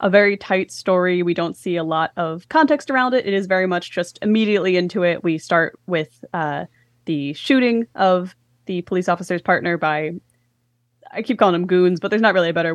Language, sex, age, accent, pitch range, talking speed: English, female, 10-29, American, 160-205 Hz, 205 wpm